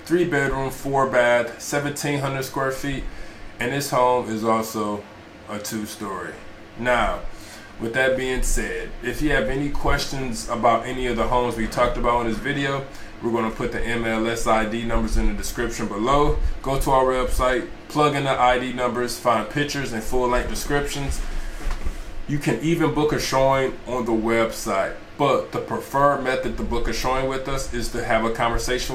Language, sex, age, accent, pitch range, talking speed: English, male, 20-39, American, 110-135 Hz, 180 wpm